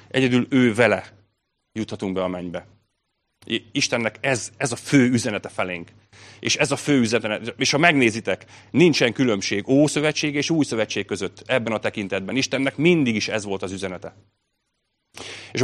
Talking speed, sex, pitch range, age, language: 155 wpm, male, 95-125 Hz, 30-49, Hungarian